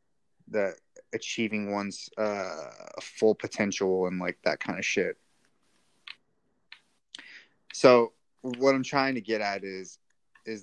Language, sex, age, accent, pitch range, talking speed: English, male, 20-39, American, 100-120 Hz, 120 wpm